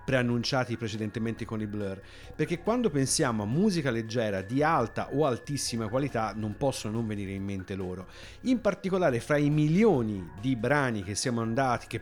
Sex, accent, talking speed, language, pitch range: male, native, 170 wpm, Italian, 110-155 Hz